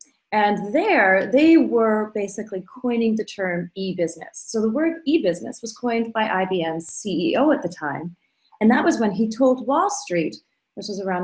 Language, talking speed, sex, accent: English, 170 wpm, female, American